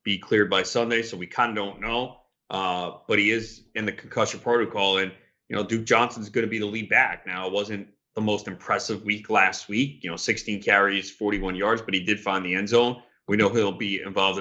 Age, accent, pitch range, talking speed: 30-49, American, 100-130 Hz, 235 wpm